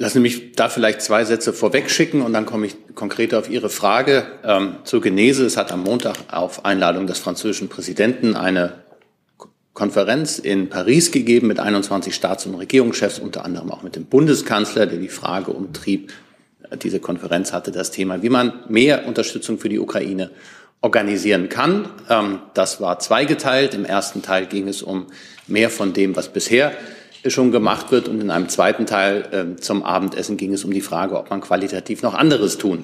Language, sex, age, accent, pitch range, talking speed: German, male, 40-59, German, 95-110 Hz, 185 wpm